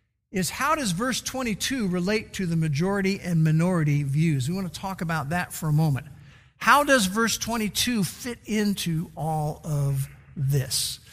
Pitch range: 145-195 Hz